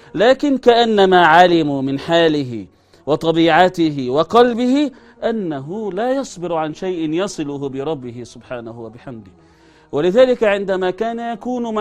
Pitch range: 120-180 Hz